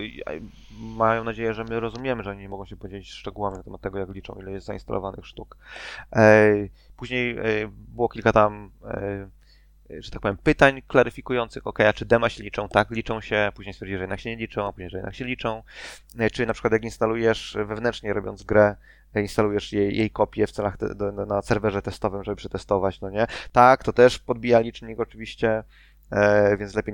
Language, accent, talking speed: Polish, native, 180 wpm